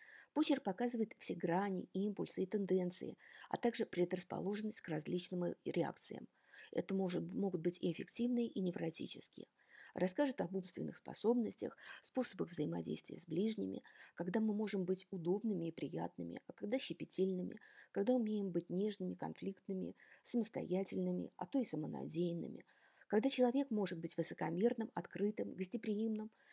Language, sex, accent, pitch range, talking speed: Russian, female, native, 185-240 Hz, 125 wpm